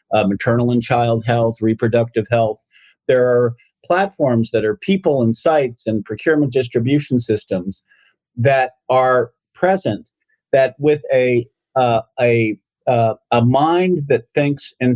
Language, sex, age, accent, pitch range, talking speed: English, male, 50-69, American, 115-145 Hz, 135 wpm